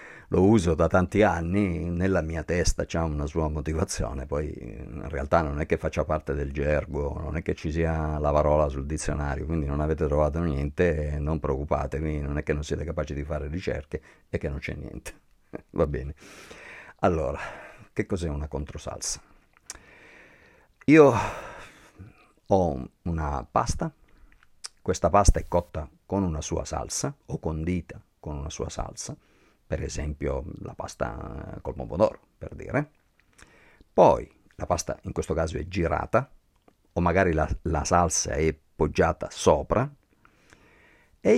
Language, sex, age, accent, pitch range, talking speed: Italian, male, 50-69, native, 75-100 Hz, 150 wpm